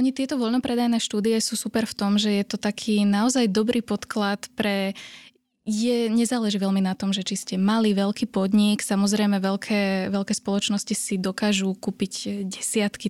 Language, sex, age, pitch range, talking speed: Slovak, female, 10-29, 195-215 Hz, 160 wpm